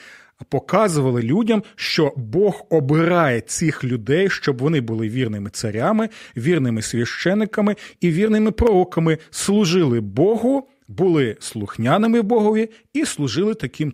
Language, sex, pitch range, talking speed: Ukrainian, male, 125-180 Hz, 110 wpm